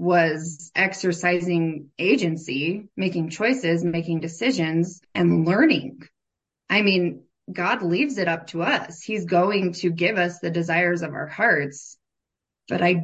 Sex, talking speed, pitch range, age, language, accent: female, 135 wpm, 170-205 Hz, 20-39, English, American